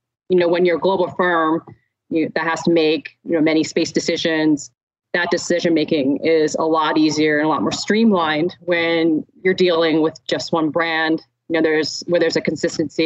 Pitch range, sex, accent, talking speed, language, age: 155-175 Hz, female, American, 200 wpm, English, 30-49